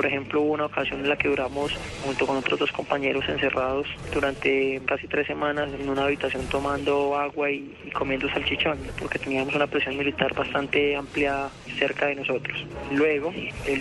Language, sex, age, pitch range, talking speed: Spanish, male, 20-39, 140-145 Hz, 175 wpm